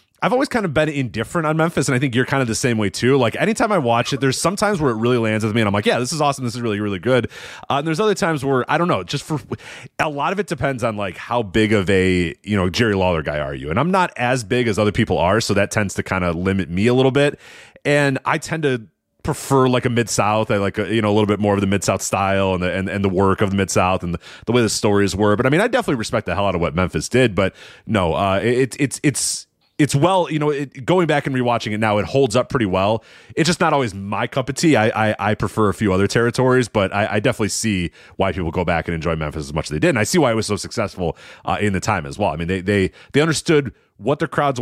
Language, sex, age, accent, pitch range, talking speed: English, male, 30-49, American, 100-135 Hz, 300 wpm